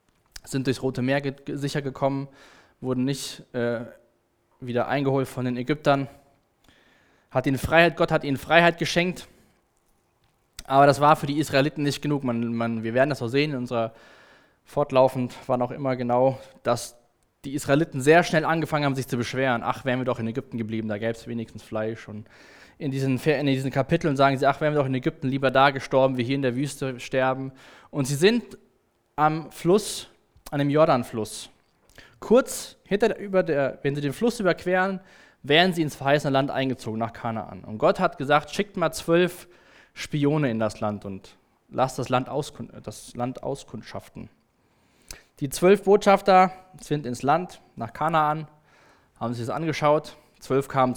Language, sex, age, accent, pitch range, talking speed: German, male, 20-39, German, 125-150 Hz, 175 wpm